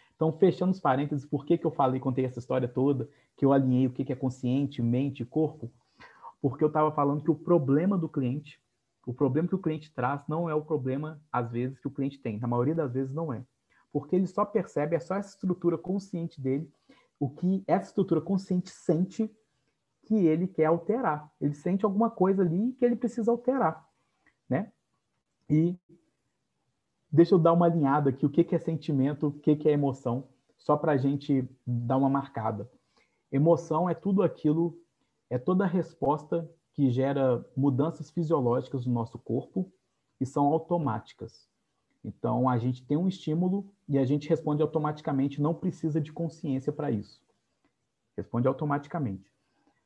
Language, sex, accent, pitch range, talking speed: Portuguese, male, Brazilian, 135-170 Hz, 175 wpm